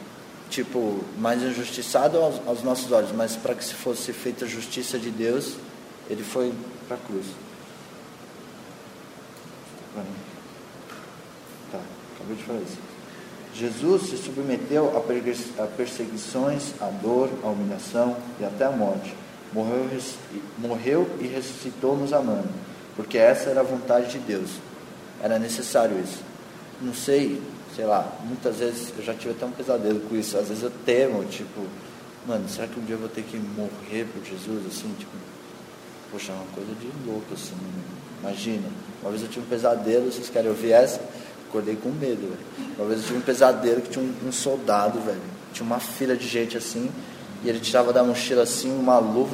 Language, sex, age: Portuguese, male, 20-39